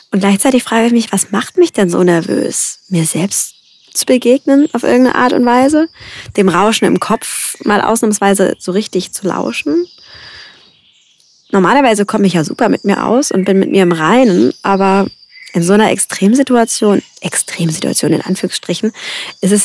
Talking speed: 165 wpm